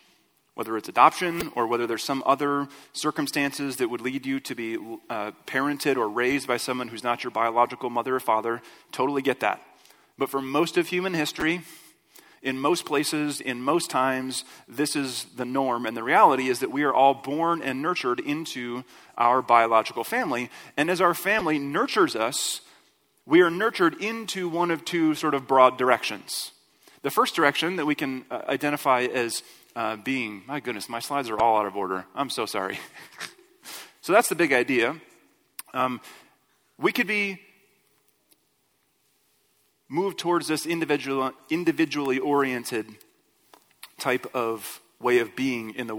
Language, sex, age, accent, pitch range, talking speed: English, male, 30-49, American, 125-160 Hz, 160 wpm